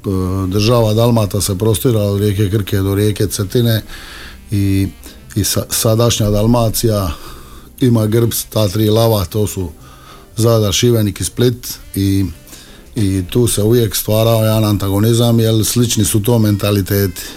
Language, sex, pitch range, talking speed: Croatian, male, 100-115 Hz, 135 wpm